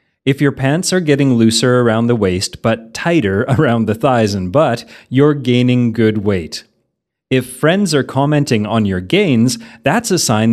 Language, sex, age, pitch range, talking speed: English, male, 30-49, 110-140 Hz, 170 wpm